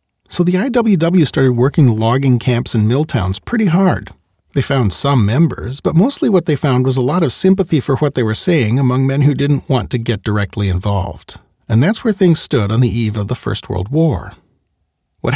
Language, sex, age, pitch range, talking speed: English, male, 40-59, 110-160 Hz, 210 wpm